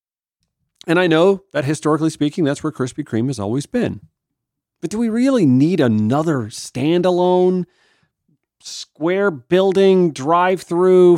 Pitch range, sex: 115-165 Hz, male